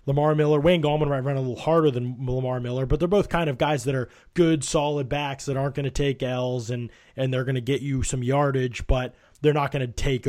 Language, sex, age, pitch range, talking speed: English, male, 20-39, 120-145 Hz, 255 wpm